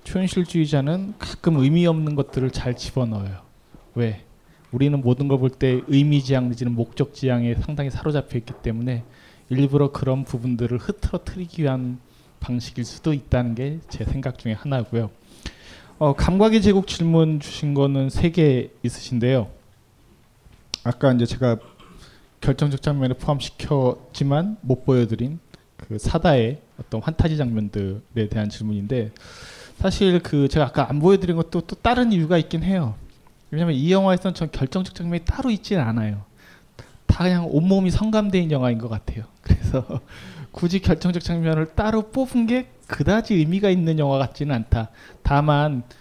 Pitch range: 120-165 Hz